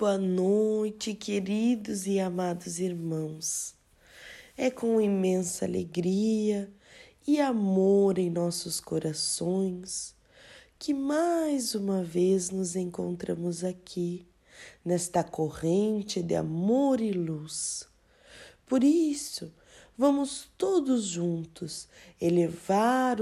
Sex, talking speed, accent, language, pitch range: female, 90 wpm, Brazilian, Portuguese, 175-235 Hz